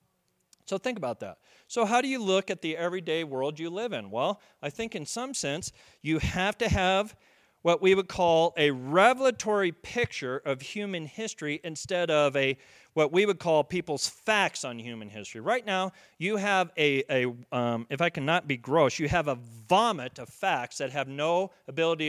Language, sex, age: English, male, 40-59